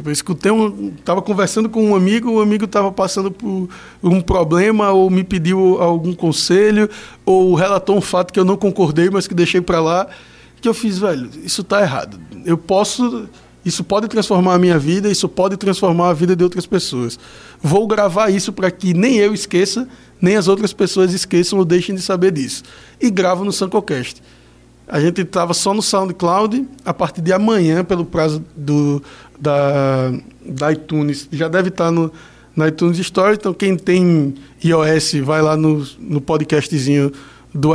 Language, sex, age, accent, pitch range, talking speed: Portuguese, male, 20-39, Brazilian, 160-200 Hz, 175 wpm